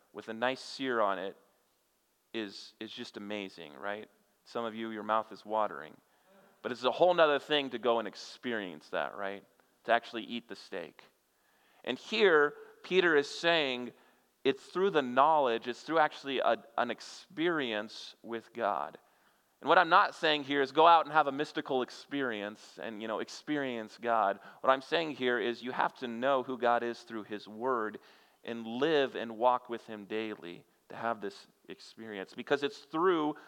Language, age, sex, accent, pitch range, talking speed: English, 30-49, male, American, 110-150 Hz, 180 wpm